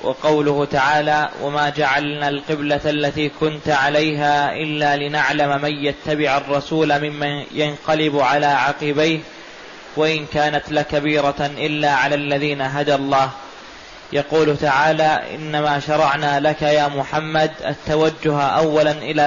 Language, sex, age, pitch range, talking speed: Arabic, male, 20-39, 145-155 Hz, 110 wpm